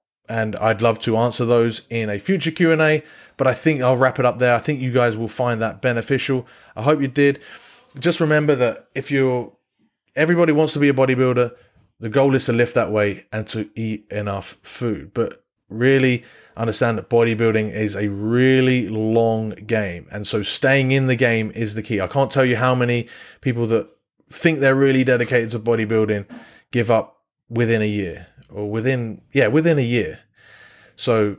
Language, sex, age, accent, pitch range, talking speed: English, male, 20-39, British, 110-130 Hz, 185 wpm